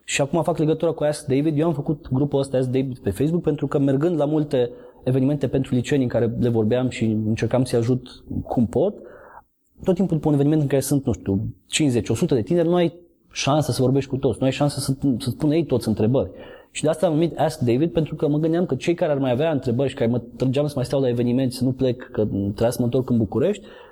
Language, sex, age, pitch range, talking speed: Romanian, male, 20-39, 115-155 Hz, 250 wpm